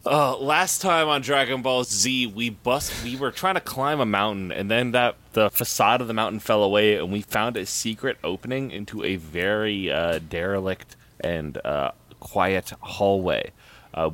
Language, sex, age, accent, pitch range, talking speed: English, male, 30-49, American, 95-120 Hz, 180 wpm